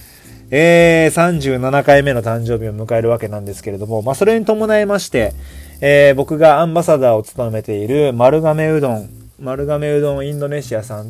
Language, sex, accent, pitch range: Japanese, male, native, 115-155 Hz